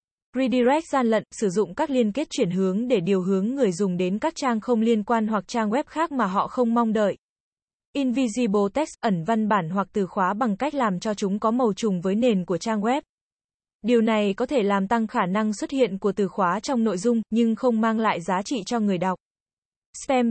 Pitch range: 205-250 Hz